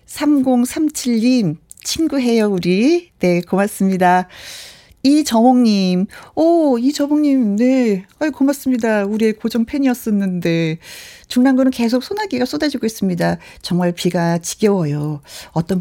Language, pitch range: Korean, 185-255 Hz